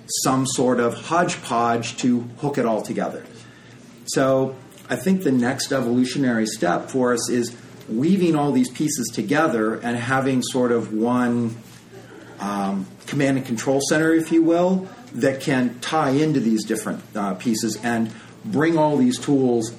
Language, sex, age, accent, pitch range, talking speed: English, male, 40-59, American, 120-160 Hz, 150 wpm